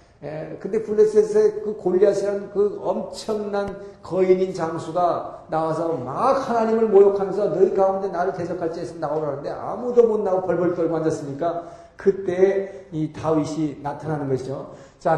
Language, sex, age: Korean, male, 50-69